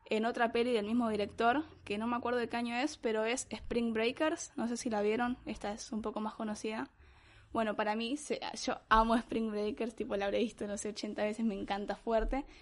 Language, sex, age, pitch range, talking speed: Spanish, female, 10-29, 210-235 Hz, 230 wpm